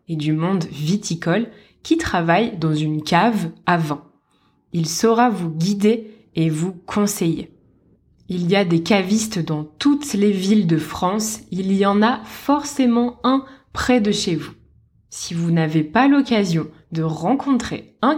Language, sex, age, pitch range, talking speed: French, female, 20-39, 175-250 Hz, 155 wpm